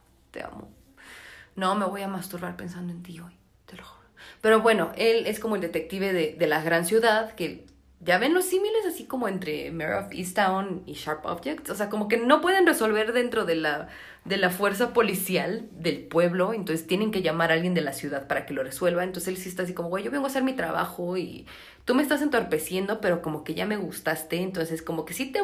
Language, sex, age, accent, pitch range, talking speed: Spanish, female, 30-49, Mexican, 170-225 Hz, 230 wpm